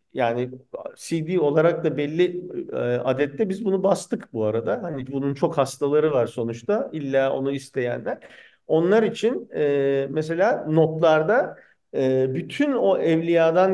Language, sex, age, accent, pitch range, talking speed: Turkish, male, 50-69, native, 145-215 Hz, 120 wpm